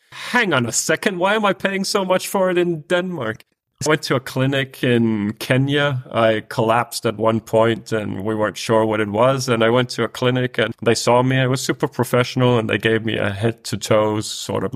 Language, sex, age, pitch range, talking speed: English, male, 30-49, 115-140 Hz, 230 wpm